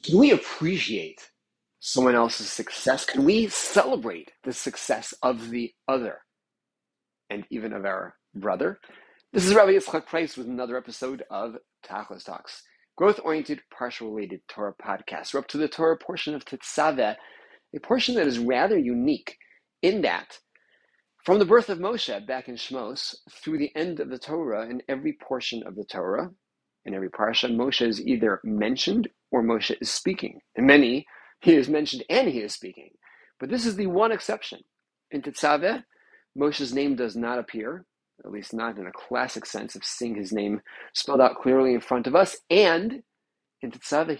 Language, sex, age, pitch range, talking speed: English, male, 30-49, 120-180 Hz, 170 wpm